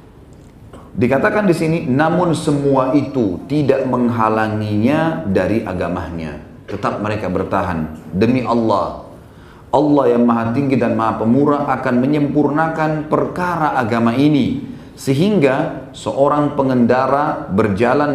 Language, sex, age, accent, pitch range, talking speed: Indonesian, male, 30-49, native, 110-150 Hz, 105 wpm